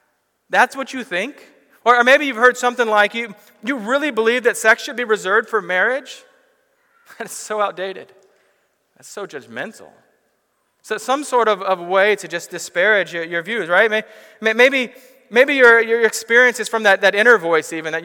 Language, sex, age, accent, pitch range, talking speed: English, male, 40-59, American, 170-235 Hz, 180 wpm